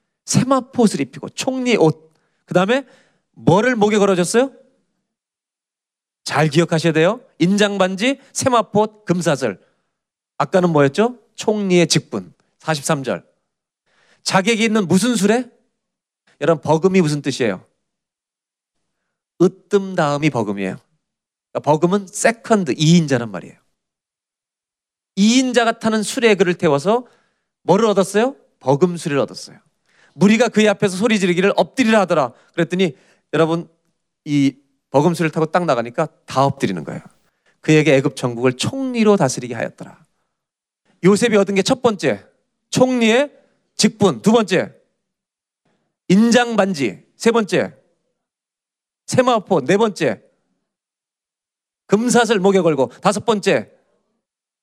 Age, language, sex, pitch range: 40-59, Korean, male, 160-225 Hz